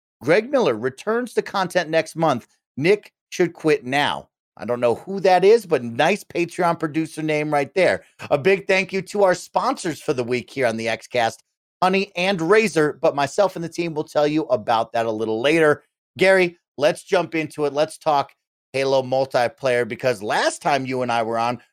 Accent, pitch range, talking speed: American, 130-165 Hz, 195 wpm